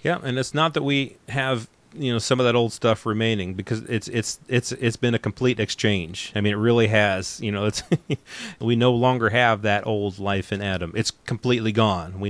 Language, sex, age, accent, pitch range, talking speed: English, male, 30-49, American, 100-120 Hz, 220 wpm